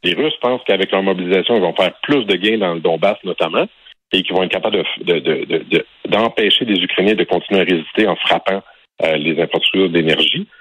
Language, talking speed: French, 215 wpm